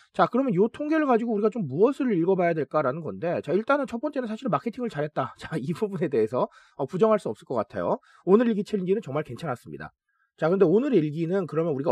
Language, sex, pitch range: Korean, male, 155-240 Hz